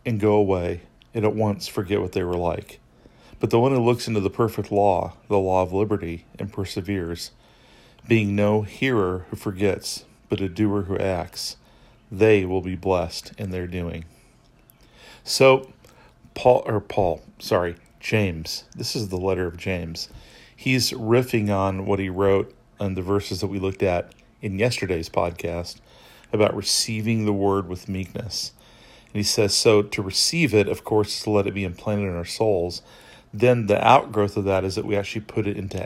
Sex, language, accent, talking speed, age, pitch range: male, English, American, 175 wpm, 40-59, 95-110 Hz